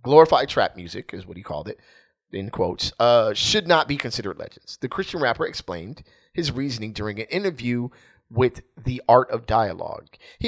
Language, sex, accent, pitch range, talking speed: English, male, American, 105-145 Hz, 180 wpm